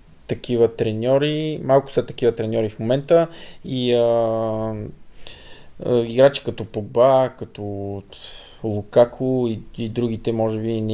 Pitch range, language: 110-125 Hz, Bulgarian